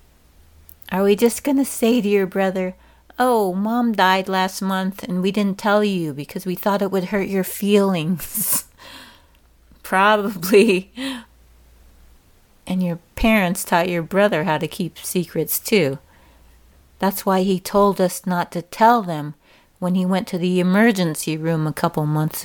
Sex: female